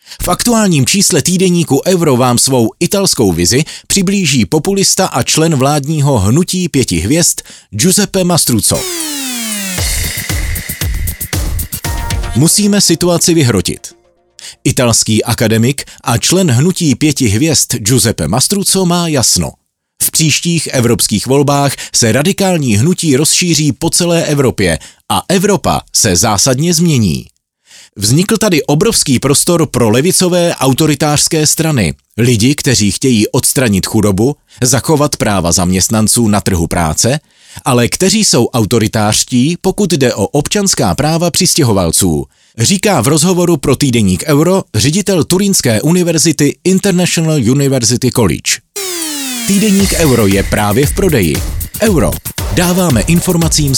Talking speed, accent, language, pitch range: 110 wpm, native, Czech, 110-175 Hz